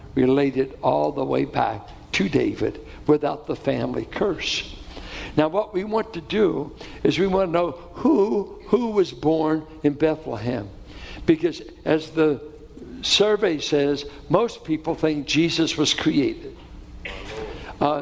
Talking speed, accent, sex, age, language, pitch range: 135 wpm, American, male, 60-79, English, 145-195 Hz